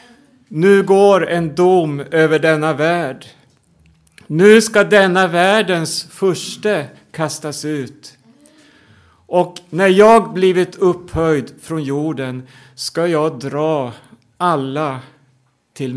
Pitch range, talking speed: 140-170 Hz, 100 wpm